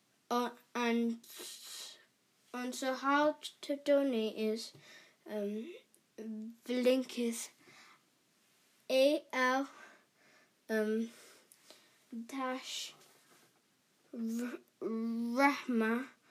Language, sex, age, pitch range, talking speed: English, female, 20-39, 225-260 Hz, 65 wpm